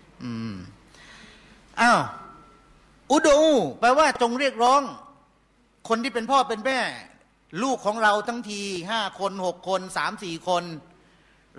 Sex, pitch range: male, 155-220 Hz